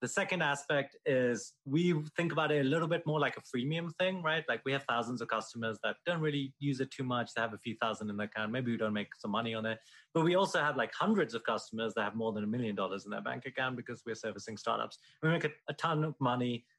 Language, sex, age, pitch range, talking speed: English, male, 30-49, 110-150 Hz, 270 wpm